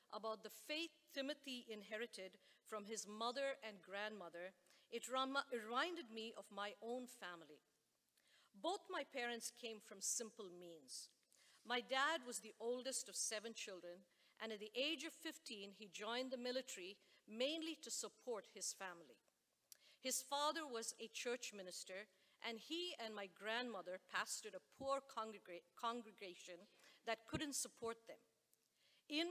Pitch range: 205-260 Hz